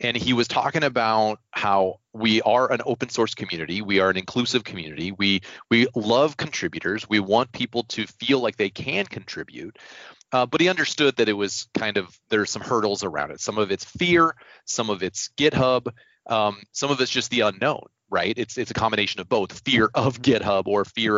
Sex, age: male, 30-49